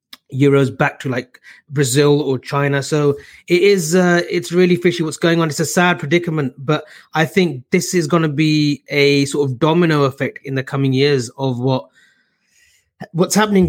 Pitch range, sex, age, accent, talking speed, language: 135-155 Hz, male, 30-49, British, 185 wpm, English